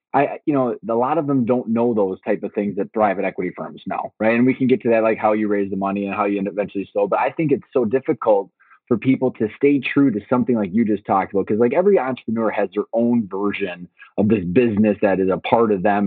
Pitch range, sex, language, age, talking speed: 105-130 Hz, male, English, 20-39, 275 wpm